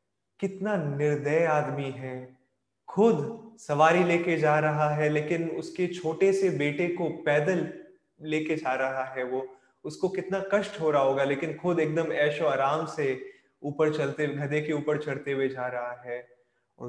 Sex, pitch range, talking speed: male, 130-160 Hz, 160 wpm